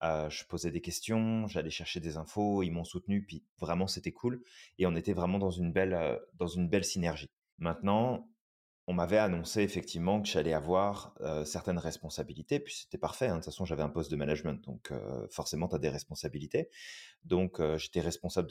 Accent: French